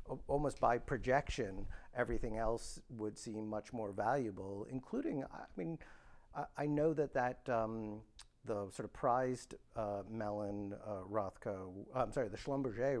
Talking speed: 145 wpm